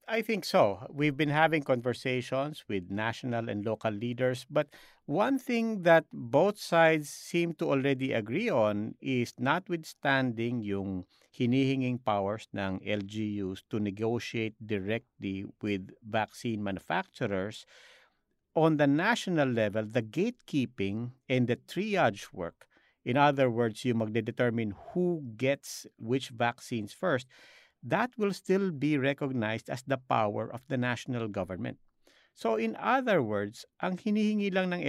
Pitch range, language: 110-145 Hz, English